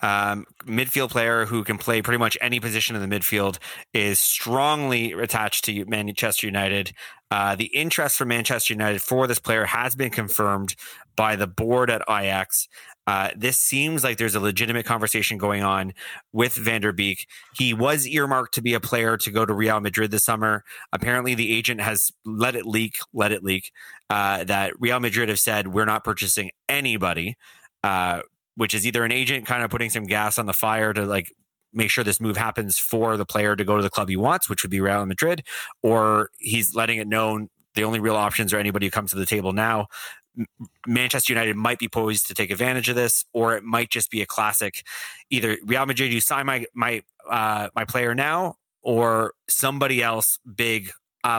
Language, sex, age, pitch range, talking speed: English, male, 30-49, 105-120 Hz, 200 wpm